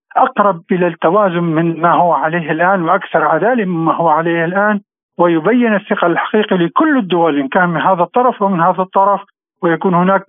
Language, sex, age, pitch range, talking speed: Arabic, male, 50-69, 155-195 Hz, 165 wpm